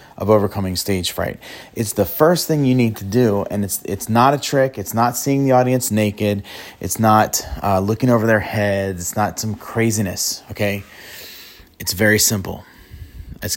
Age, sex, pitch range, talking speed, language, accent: 30-49, male, 90-110 Hz, 175 wpm, English, American